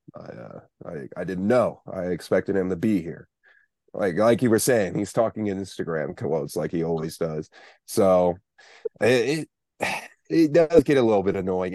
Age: 30-49